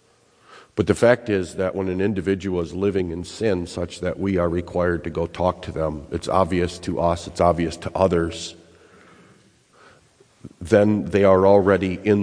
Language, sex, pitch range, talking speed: English, male, 85-100 Hz, 170 wpm